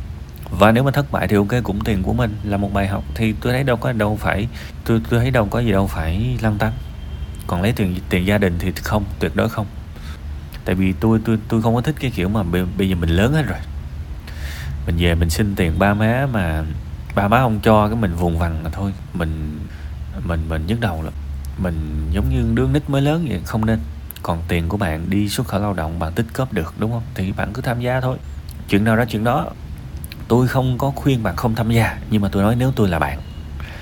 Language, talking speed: Vietnamese, 245 wpm